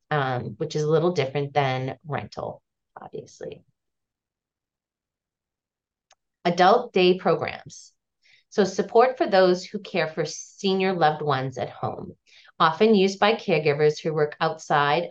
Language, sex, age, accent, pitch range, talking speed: English, female, 30-49, American, 145-185 Hz, 125 wpm